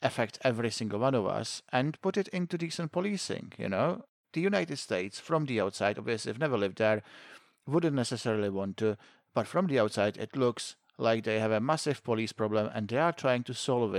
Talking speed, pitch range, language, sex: 205 wpm, 110-140 Hz, English, male